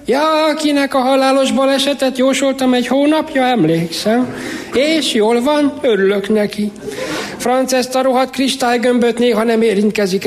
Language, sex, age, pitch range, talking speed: Hungarian, male, 60-79, 200-250 Hz, 125 wpm